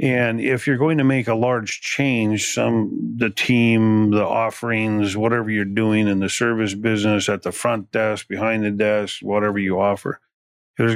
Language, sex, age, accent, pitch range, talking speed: English, male, 40-59, American, 100-115 Hz, 175 wpm